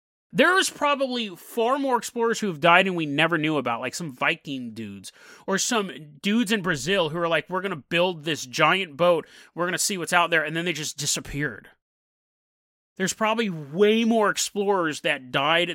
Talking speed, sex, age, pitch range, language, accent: 195 wpm, male, 30-49, 170-230 Hz, English, American